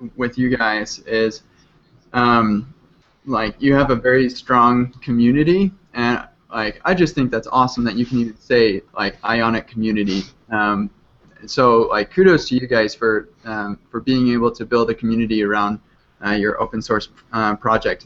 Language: English